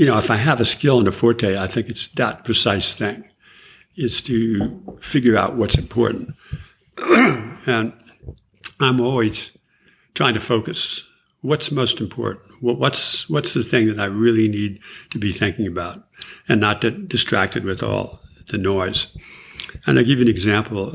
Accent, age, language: American, 60-79, English